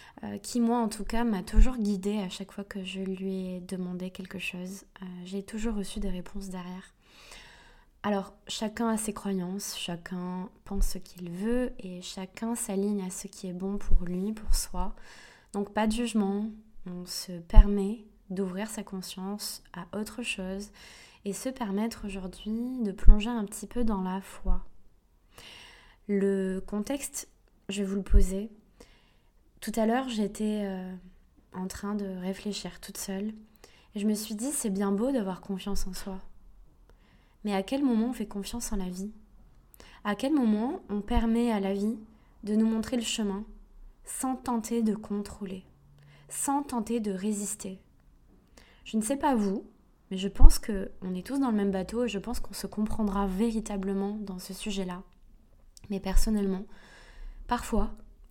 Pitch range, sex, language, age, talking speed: 190-220 Hz, female, French, 20-39, 165 wpm